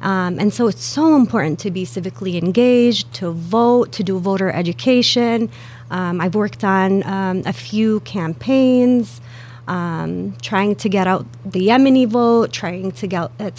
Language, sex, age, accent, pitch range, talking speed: English, female, 30-49, American, 170-220 Hz, 155 wpm